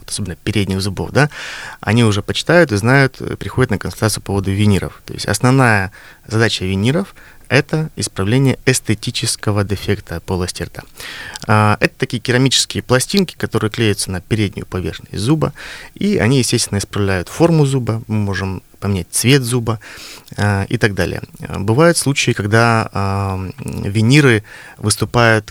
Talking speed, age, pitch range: 130 wpm, 30-49, 100-125 Hz